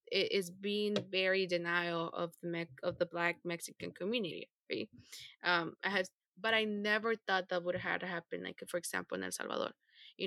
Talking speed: 185 wpm